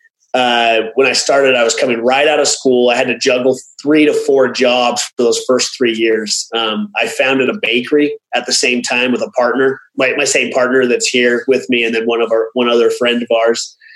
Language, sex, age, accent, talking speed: English, male, 30-49, American, 230 wpm